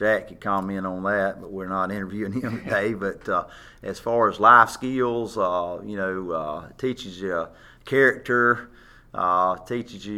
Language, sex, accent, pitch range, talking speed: English, male, American, 95-120 Hz, 170 wpm